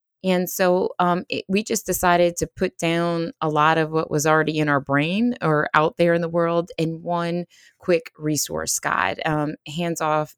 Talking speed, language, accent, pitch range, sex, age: 190 wpm, English, American, 145-170 Hz, female, 20-39